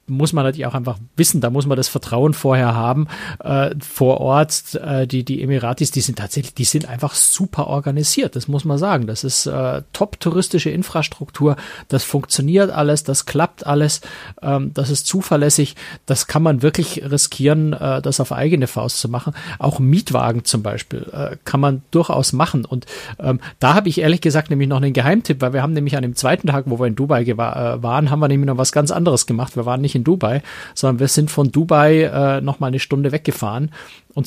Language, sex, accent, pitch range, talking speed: German, male, German, 130-150 Hz, 210 wpm